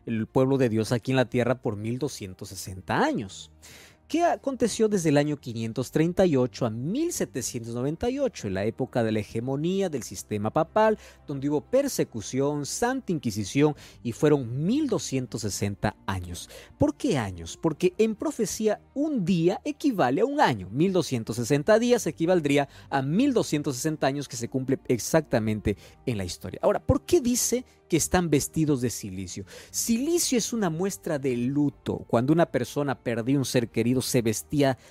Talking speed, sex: 150 wpm, male